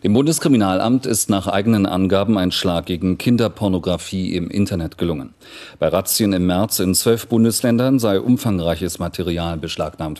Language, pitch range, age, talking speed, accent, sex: German, 85-105 Hz, 40-59, 140 wpm, German, male